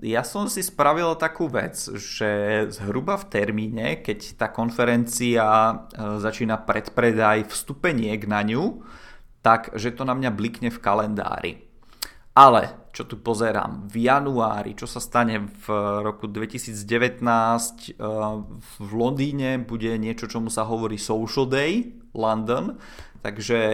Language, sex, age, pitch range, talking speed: Czech, male, 20-39, 105-120 Hz, 125 wpm